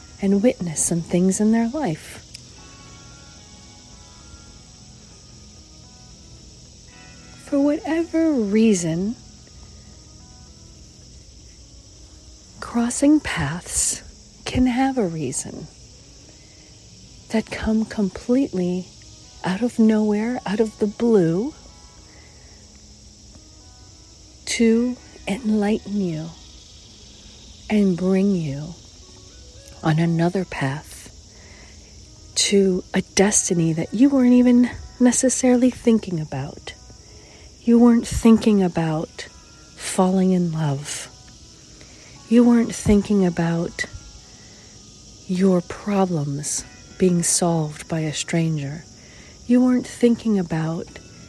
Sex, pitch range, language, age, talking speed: female, 165-225 Hz, English, 40-59, 80 wpm